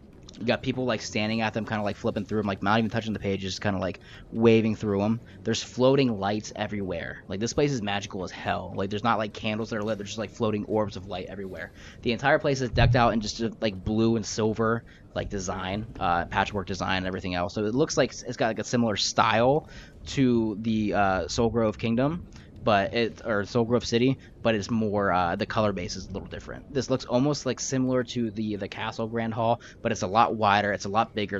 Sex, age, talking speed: male, 20-39, 235 wpm